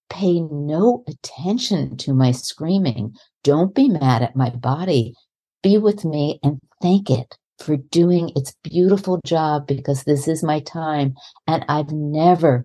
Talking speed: 145 wpm